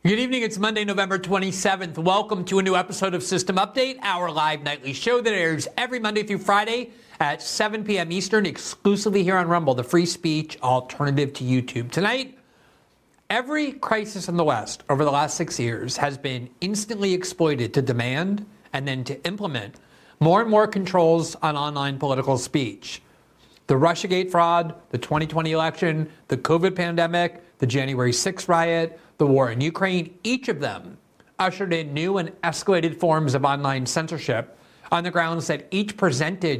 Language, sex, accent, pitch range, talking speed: English, male, American, 145-195 Hz, 165 wpm